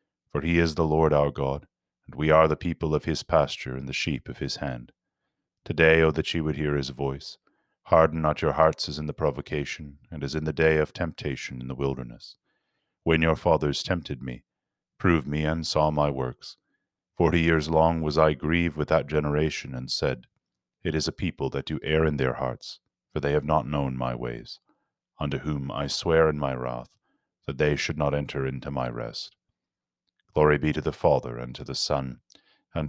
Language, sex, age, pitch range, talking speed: English, male, 30-49, 70-80 Hz, 205 wpm